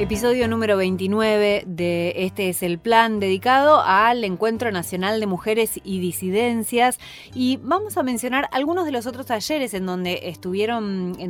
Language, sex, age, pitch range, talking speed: Spanish, female, 30-49, 190-255 Hz, 155 wpm